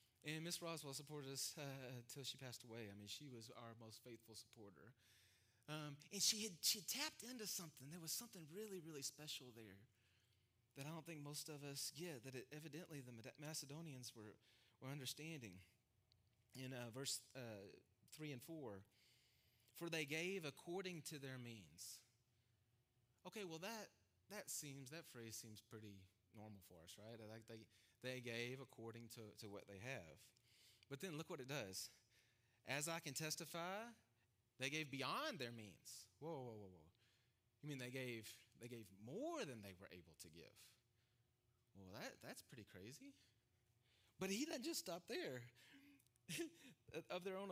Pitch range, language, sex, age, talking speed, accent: 115-160 Hz, English, male, 30-49, 165 wpm, American